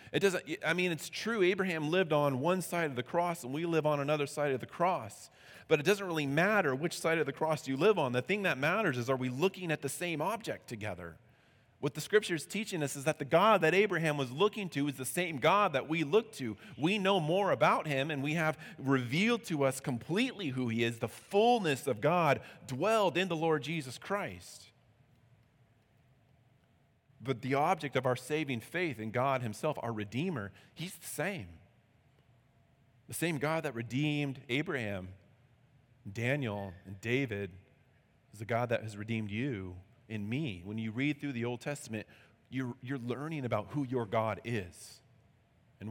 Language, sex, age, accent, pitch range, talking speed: English, male, 30-49, American, 115-155 Hz, 190 wpm